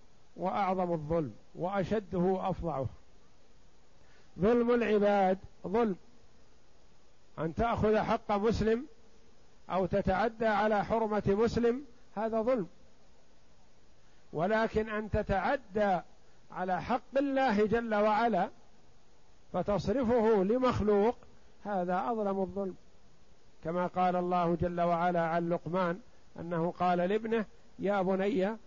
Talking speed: 90 wpm